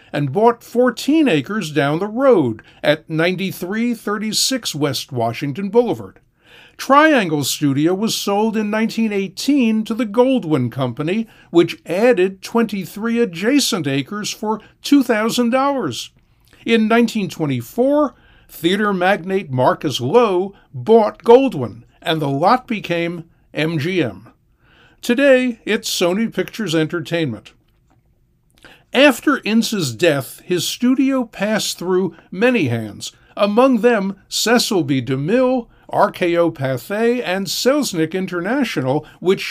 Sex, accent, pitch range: male, American, 160-235 Hz